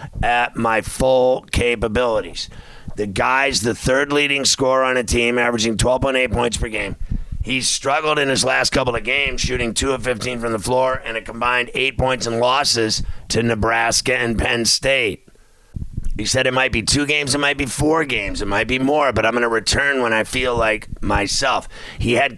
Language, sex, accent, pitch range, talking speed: English, male, American, 110-130 Hz, 195 wpm